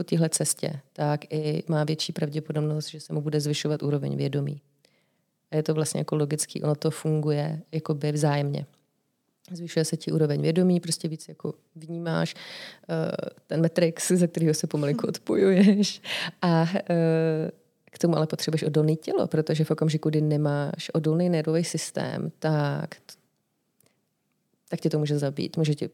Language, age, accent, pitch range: Czech, 30-49, native, 155-170 Hz